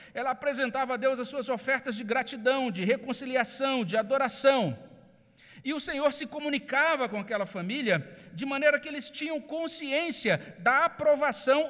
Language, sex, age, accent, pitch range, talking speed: Portuguese, male, 50-69, Brazilian, 180-265 Hz, 150 wpm